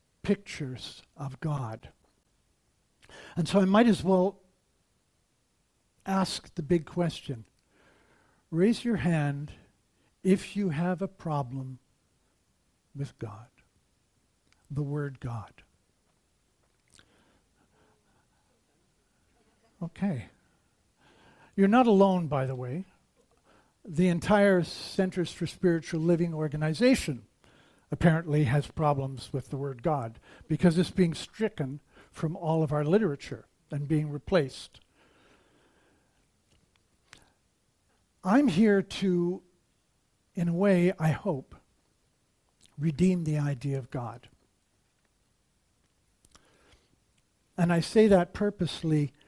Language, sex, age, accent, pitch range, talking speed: English, male, 60-79, American, 140-185 Hz, 95 wpm